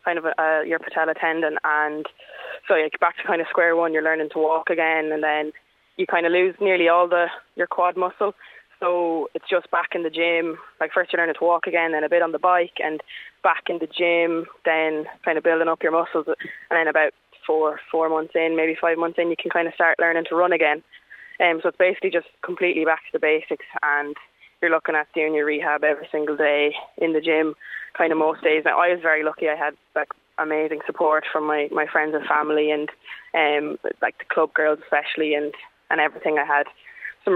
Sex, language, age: female, English, 20-39